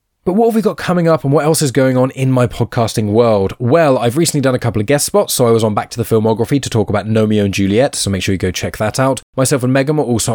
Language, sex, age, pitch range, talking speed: English, male, 10-29, 105-130 Hz, 310 wpm